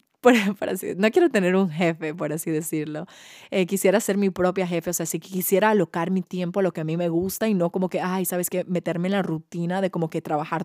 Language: Spanish